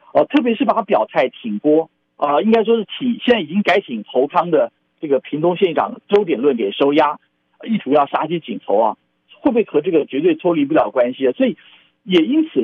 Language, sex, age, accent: Chinese, male, 50-69, native